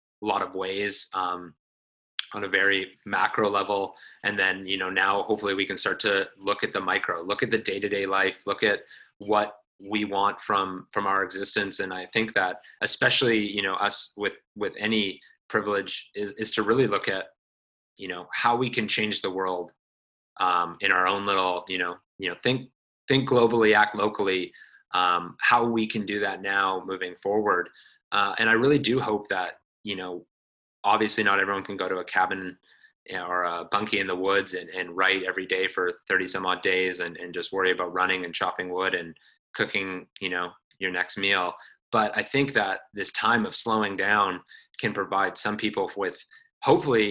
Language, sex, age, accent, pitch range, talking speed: English, male, 30-49, American, 90-105 Hz, 190 wpm